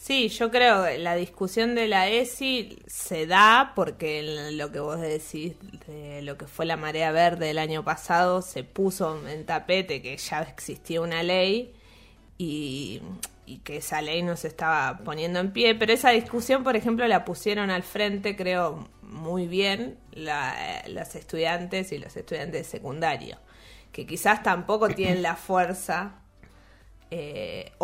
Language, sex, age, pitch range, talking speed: Spanish, female, 20-39, 155-195 Hz, 155 wpm